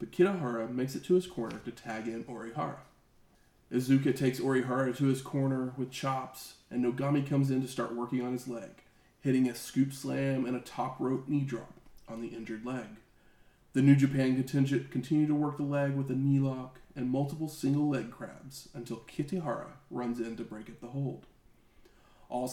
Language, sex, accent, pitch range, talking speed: English, male, American, 120-140 Hz, 190 wpm